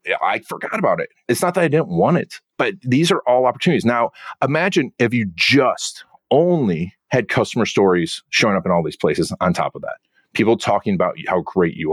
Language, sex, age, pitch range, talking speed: English, male, 40-59, 95-150 Hz, 205 wpm